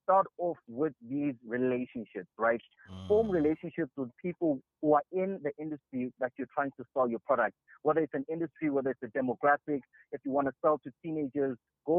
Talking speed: 190 wpm